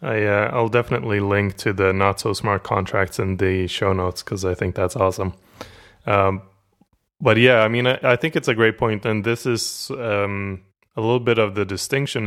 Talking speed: 195 wpm